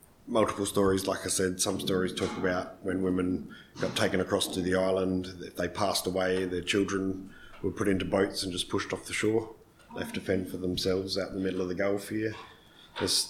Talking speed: 210 wpm